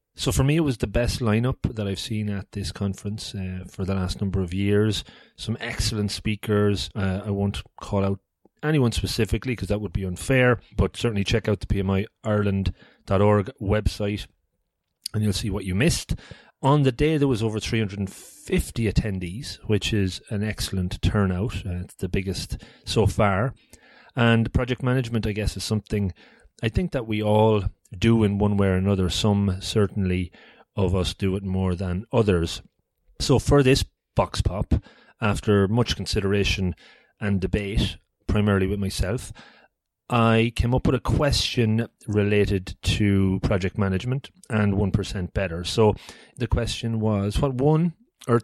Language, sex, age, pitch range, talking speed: English, male, 30-49, 95-115 Hz, 160 wpm